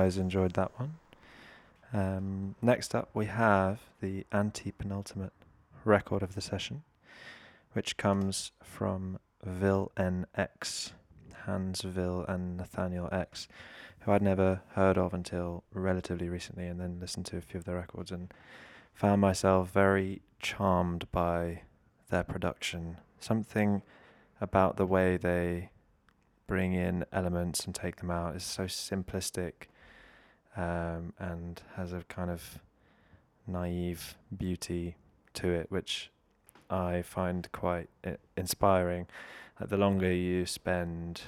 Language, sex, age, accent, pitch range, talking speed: English, male, 20-39, British, 85-95 Hz, 125 wpm